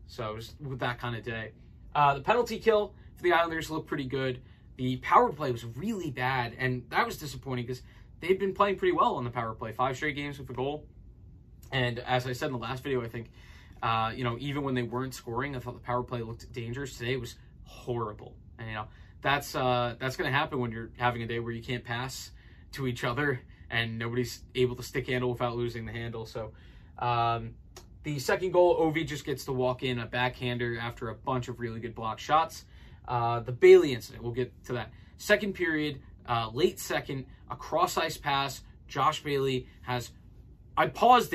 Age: 20-39